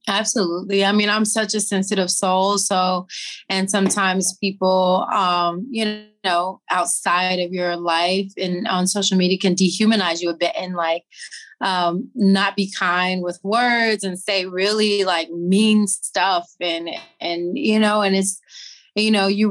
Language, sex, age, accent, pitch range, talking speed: English, female, 20-39, American, 185-210 Hz, 155 wpm